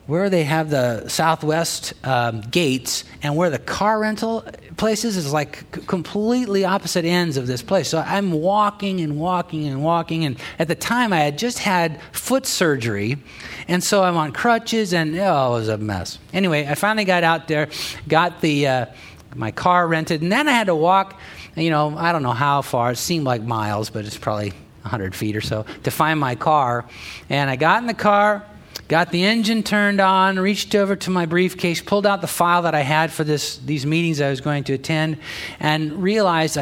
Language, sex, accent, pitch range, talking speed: English, male, American, 135-185 Hz, 205 wpm